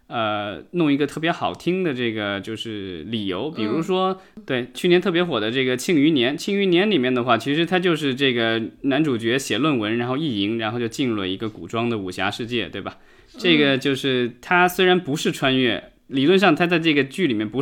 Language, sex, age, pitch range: Chinese, male, 20-39, 115-165 Hz